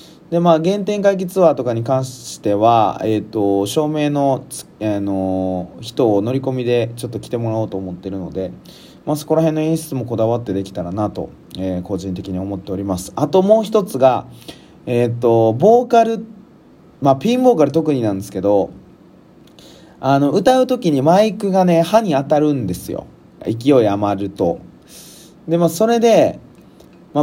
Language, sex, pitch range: Japanese, male, 105-170 Hz